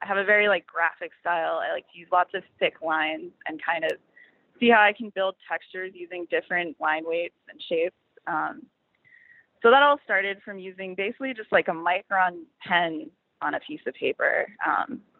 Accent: American